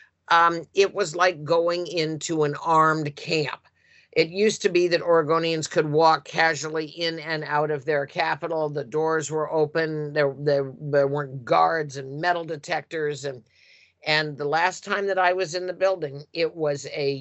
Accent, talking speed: American, 175 wpm